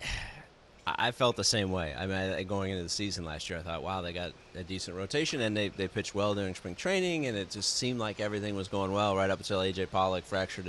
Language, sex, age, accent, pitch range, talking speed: English, male, 30-49, American, 95-115 Hz, 245 wpm